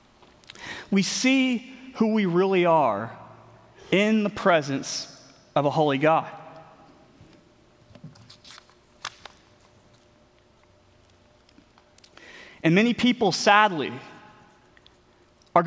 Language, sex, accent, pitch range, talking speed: English, male, American, 135-180 Hz, 70 wpm